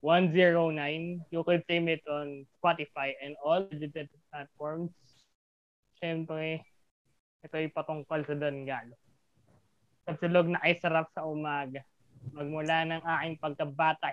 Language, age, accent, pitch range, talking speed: Filipino, 20-39, native, 150-175 Hz, 110 wpm